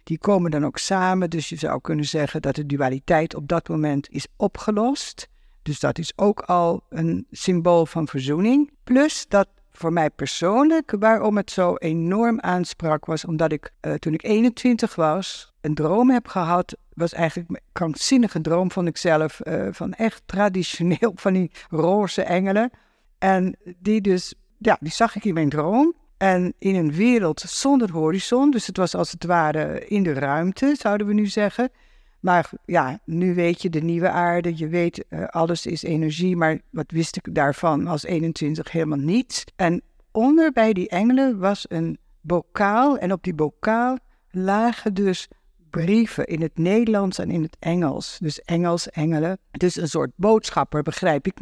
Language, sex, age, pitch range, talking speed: Dutch, female, 60-79, 160-215 Hz, 170 wpm